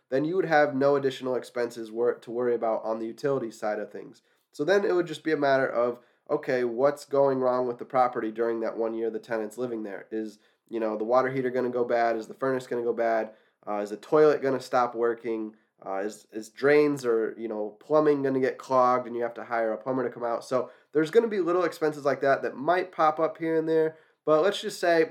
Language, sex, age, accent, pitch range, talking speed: English, male, 20-39, American, 120-150 Hz, 255 wpm